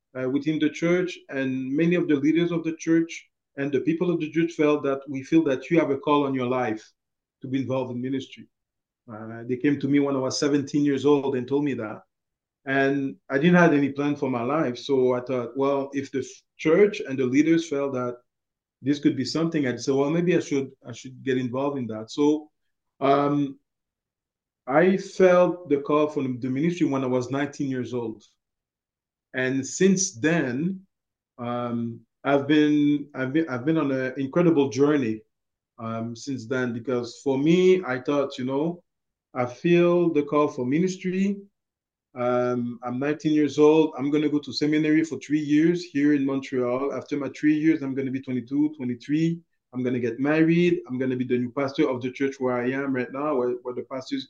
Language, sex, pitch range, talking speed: English, male, 125-150 Hz, 195 wpm